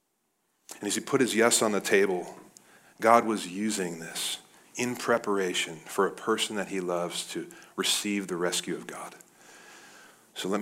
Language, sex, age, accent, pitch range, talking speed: English, male, 40-59, American, 100-125 Hz, 165 wpm